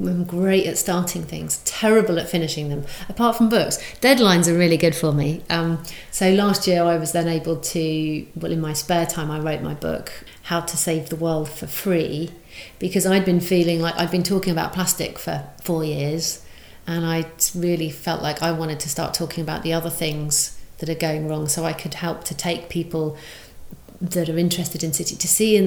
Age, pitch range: 40-59, 155-175 Hz